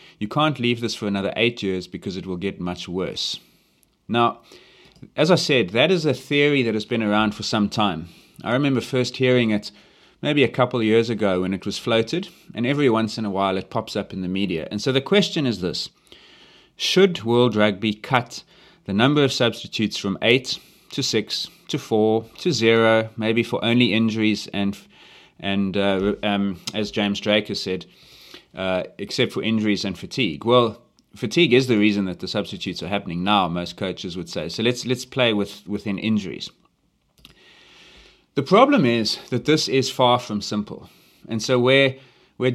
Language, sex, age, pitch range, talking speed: English, male, 30-49, 100-125 Hz, 185 wpm